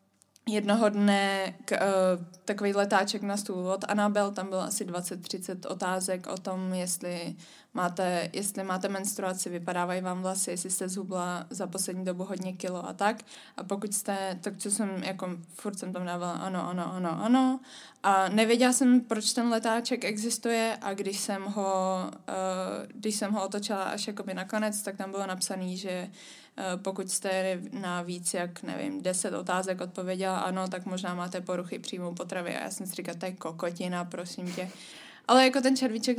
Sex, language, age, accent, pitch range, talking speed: female, Czech, 20-39, native, 185-225 Hz, 165 wpm